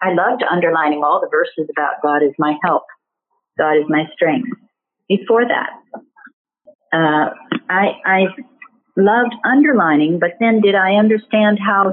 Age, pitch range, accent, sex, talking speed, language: 50-69, 155-215 Hz, American, female, 140 wpm, English